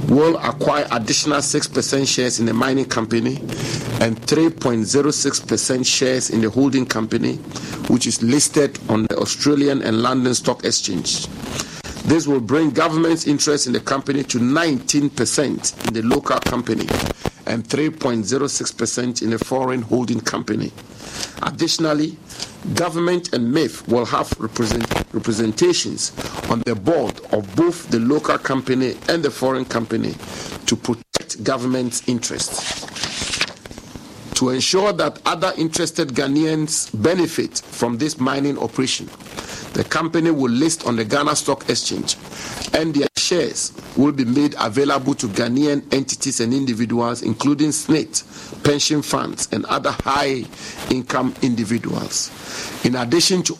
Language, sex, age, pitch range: English, male, 50-69, 120-150 Hz